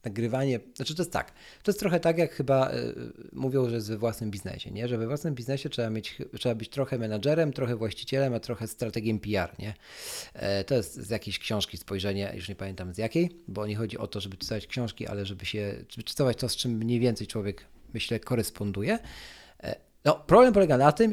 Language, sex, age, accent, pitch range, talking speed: Polish, male, 40-59, native, 110-155 Hz, 210 wpm